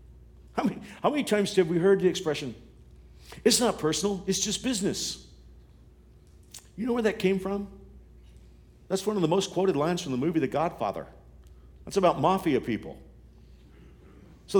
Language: English